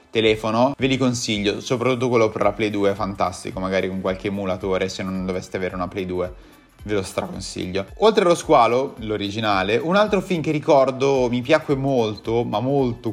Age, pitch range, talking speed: 30-49, 110-150 Hz, 180 wpm